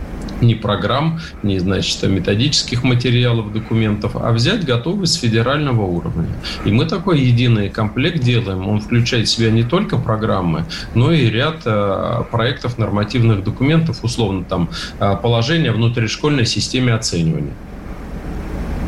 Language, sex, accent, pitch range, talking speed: Russian, male, native, 100-125 Hz, 120 wpm